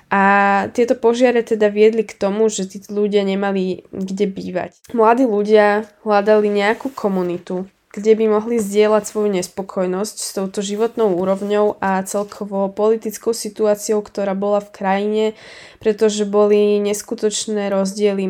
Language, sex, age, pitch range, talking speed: Slovak, female, 20-39, 195-225 Hz, 130 wpm